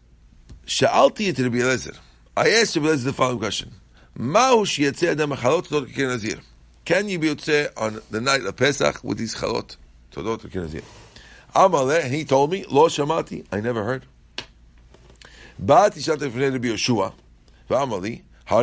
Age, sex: 50-69, male